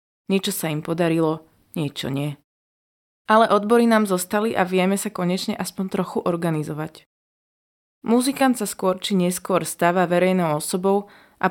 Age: 20-39